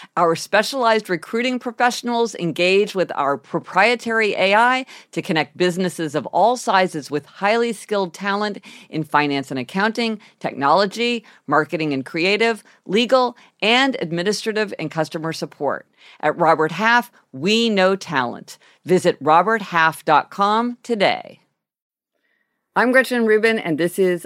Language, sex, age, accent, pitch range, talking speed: English, female, 50-69, American, 160-225 Hz, 120 wpm